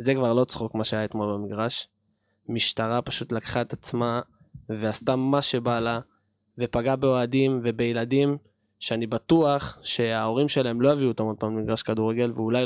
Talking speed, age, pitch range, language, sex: 150 wpm, 20-39, 120-150 Hz, Hebrew, male